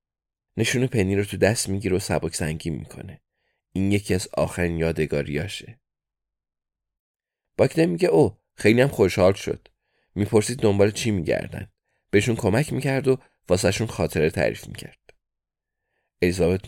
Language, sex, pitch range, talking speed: Persian, male, 85-110 Hz, 120 wpm